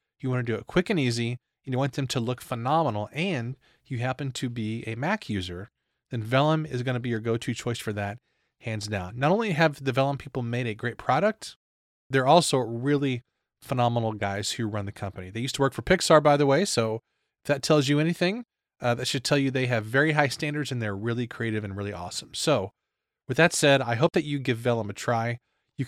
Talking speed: 230 wpm